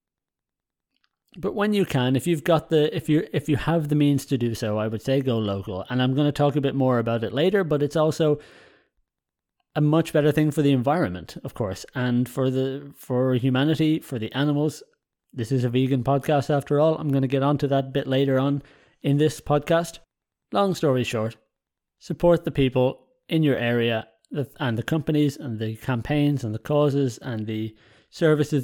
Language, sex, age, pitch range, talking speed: English, male, 30-49, 125-155 Hz, 195 wpm